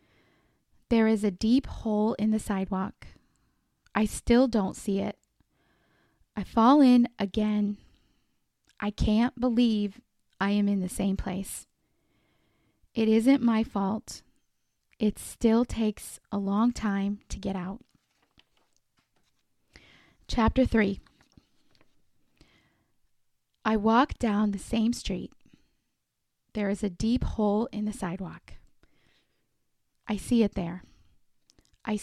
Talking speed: 110 wpm